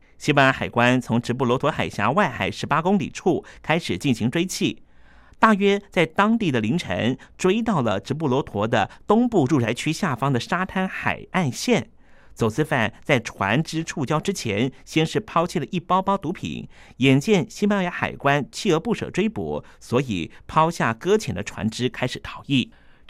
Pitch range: 120-190 Hz